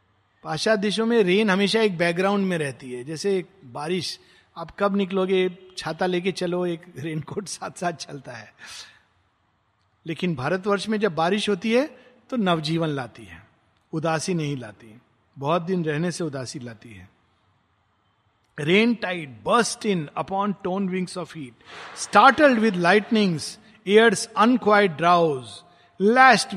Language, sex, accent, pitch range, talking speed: Hindi, male, native, 145-200 Hz, 140 wpm